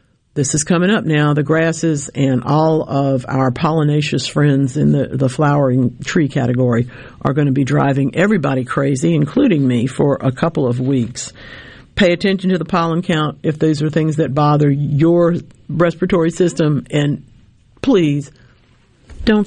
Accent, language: American, English